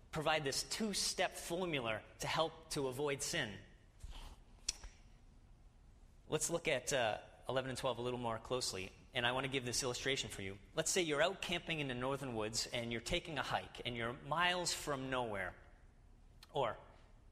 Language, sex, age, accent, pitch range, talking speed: English, male, 30-49, American, 115-170 Hz, 170 wpm